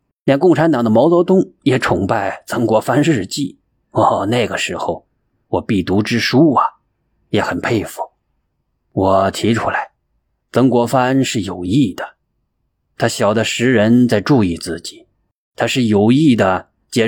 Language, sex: Chinese, male